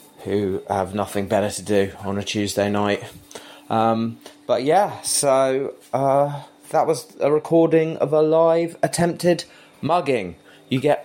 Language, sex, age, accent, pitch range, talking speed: English, male, 20-39, British, 100-140 Hz, 140 wpm